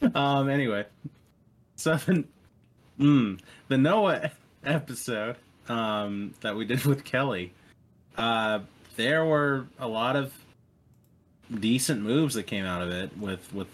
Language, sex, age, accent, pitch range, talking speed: English, male, 30-49, American, 95-135 Hz, 120 wpm